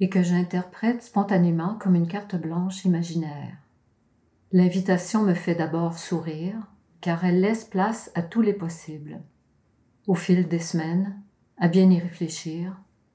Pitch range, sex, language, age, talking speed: 160-185 Hz, female, French, 50-69, 135 wpm